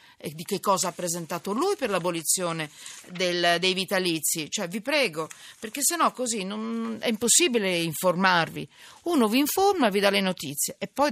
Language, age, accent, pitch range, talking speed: Italian, 50-69, native, 175-265 Hz, 180 wpm